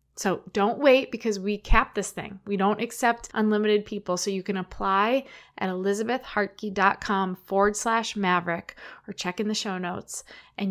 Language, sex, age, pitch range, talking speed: English, female, 20-39, 190-245 Hz, 160 wpm